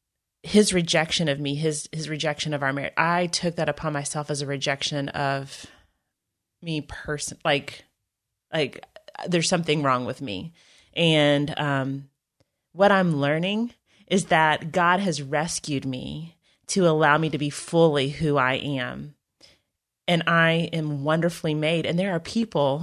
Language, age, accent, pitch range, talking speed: English, 30-49, American, 145-175 Hz, 150 wpm